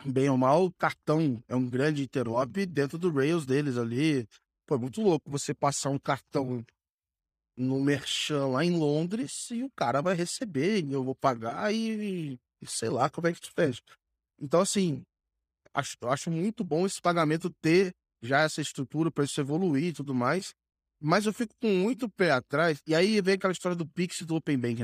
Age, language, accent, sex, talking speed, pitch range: 20-39, Portuguese, Brazilian, male, 200 wpm, 130-175 Hz